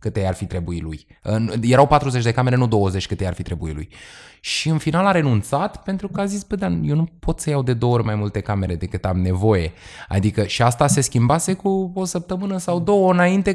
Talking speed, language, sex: 225 wpm, Romanian, male